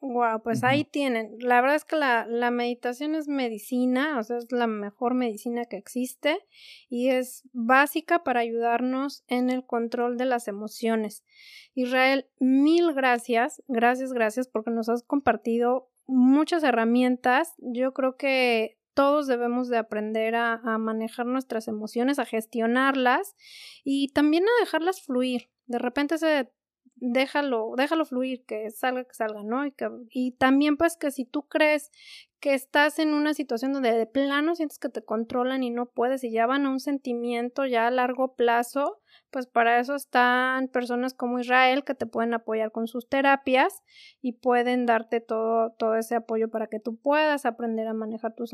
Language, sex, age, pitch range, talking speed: Spanish, female, 20-39, 235-280 Hz, 170 wpm